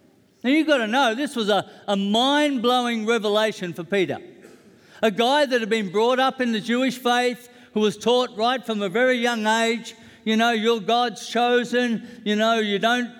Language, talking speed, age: English, 190 wpm, 60-79